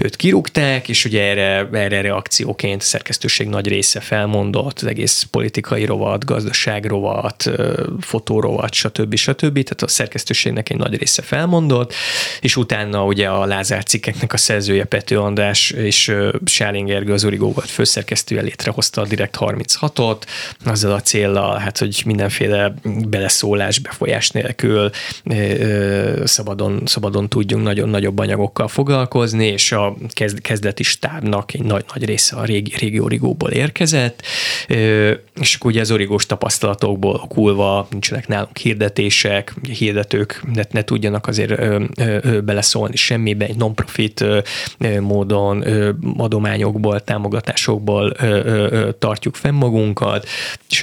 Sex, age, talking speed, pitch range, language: male, 20-39, 125 wpm, 100-120 Hz, Hungarian